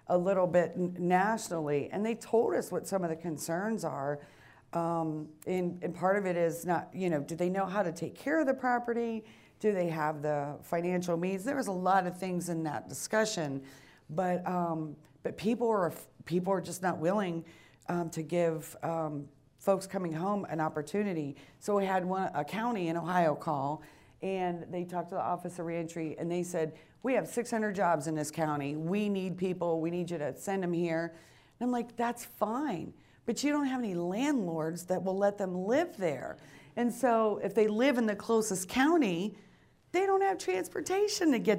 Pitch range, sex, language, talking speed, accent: 165-220 Hz, female, English, 200 wpm, American